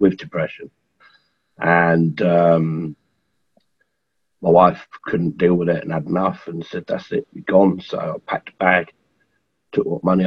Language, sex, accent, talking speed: English, male, British, 160 wpm